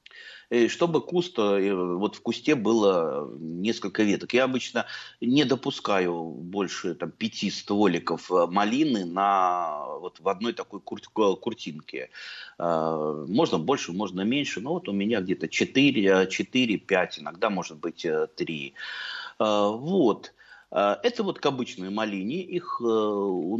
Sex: male